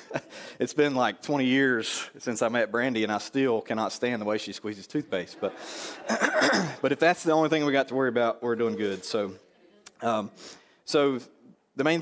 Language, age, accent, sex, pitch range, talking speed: English, 30-49, American, male, 105-125 Hz, 195 wpm